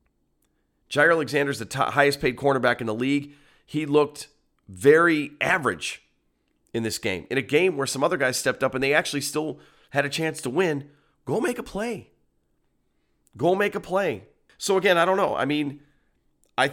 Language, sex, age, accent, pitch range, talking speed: English, male, 30-49, American, 110-140 Hz, 185 wpm